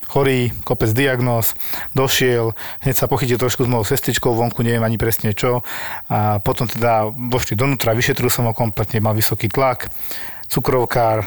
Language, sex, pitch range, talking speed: Slovak, male, 110-130 Hz, 155 wpm